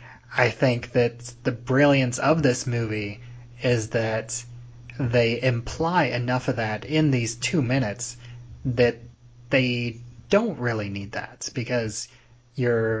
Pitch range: 110-125 Hz